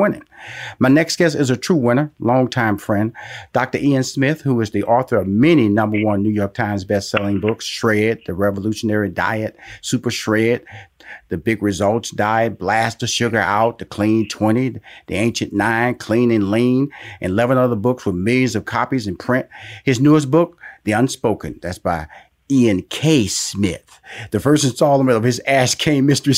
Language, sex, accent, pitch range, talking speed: English, male, American, 110-165 Hz, 175 wpm